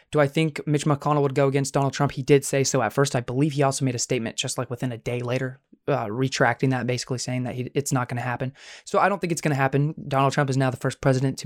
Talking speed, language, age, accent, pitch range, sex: 295 wpm, English, 20-39, American, 130-150 Hz, male